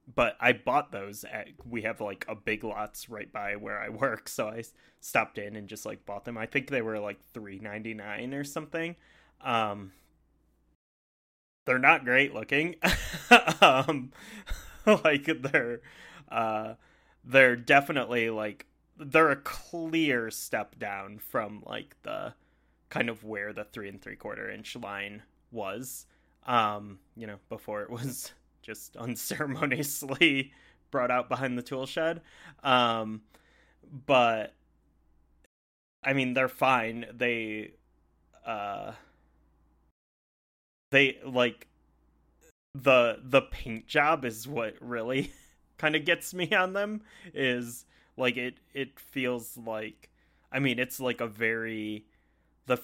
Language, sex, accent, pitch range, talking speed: English, male, American, 100-135 Hz, 130 wpm